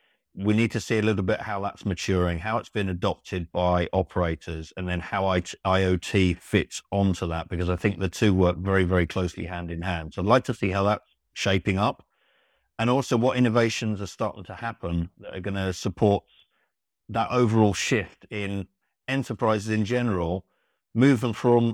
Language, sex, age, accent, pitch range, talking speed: English, male, 50-69, British, 90-105 Hz, 180 wpm